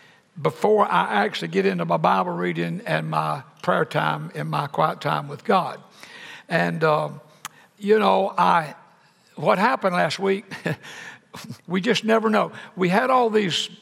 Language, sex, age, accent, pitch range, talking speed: English, male, 60-79, American, 175-215 Hz, 150 wpm